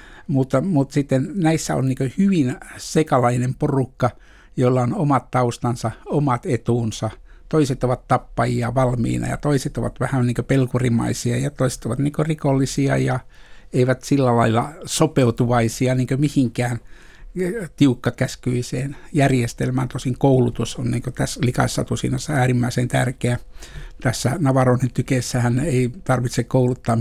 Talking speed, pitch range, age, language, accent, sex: 110 wpm, 120-130 Hz, 60-79, Finnish, native, male